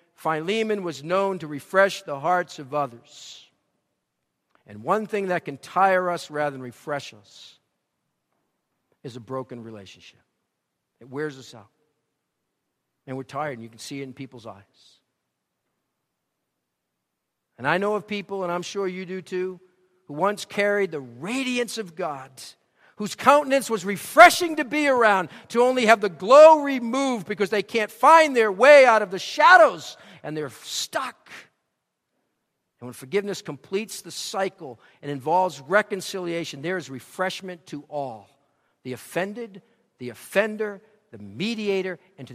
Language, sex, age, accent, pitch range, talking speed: English, male, 50-69, American, 130-200 Hz, 150 wpm